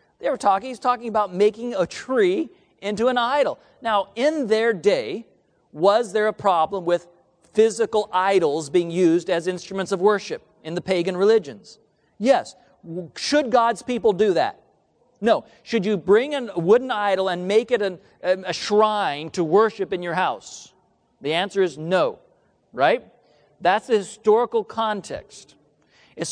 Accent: American